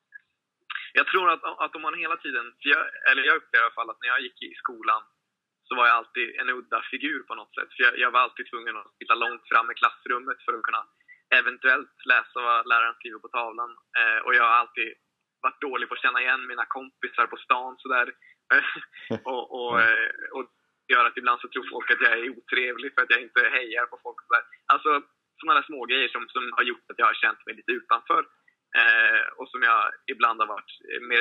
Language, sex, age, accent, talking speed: Swedish, male, 20-39, native, 220 wpm